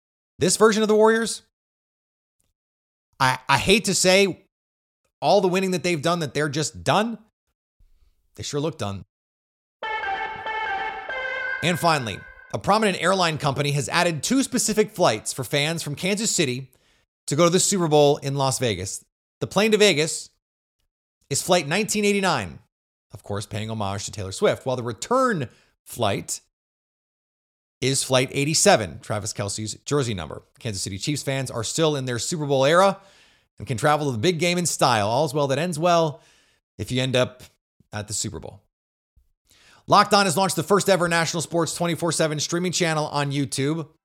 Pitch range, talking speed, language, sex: 115-180 Hz, 165 wpm, English, male